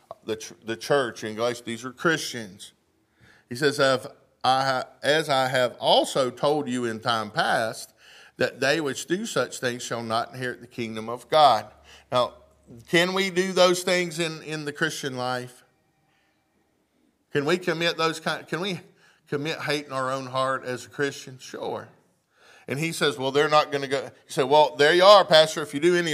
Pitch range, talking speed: 120-150 Hz, 180 wpm